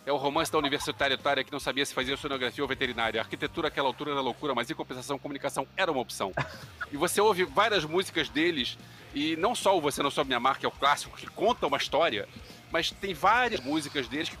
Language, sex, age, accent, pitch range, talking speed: Portuguese, male, 40-59, Brazilian, 150-210 Hz, 230 wpm